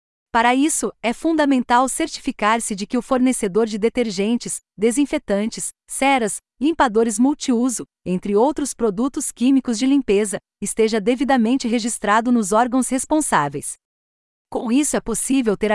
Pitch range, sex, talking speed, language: 210-260 Hz, female, 120 wpm, Portuguese